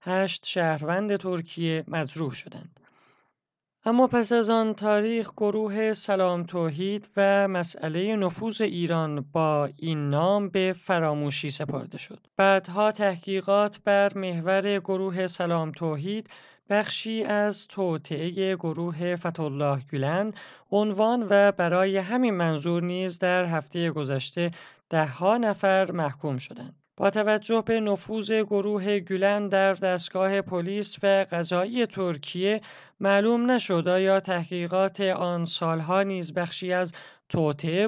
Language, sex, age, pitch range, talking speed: Persian, male, 30-49, 165-200 Hz, 115 wpm